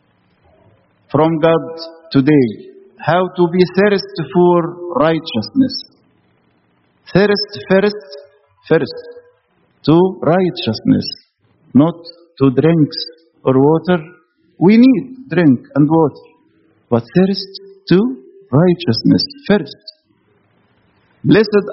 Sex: male